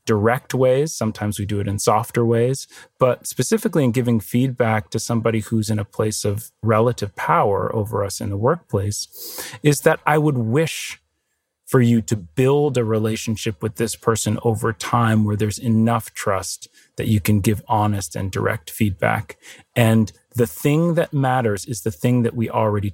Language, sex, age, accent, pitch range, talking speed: English, male, 30-49, American, 110-135 Hz, 175 wpm